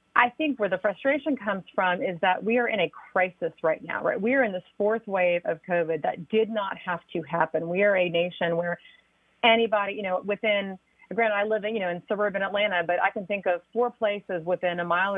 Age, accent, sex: 30-49, American, female